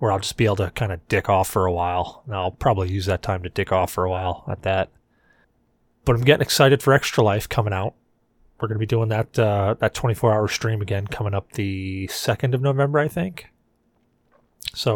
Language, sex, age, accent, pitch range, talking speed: English, male, 30-49, American, 105-135 Hz, 225 wpm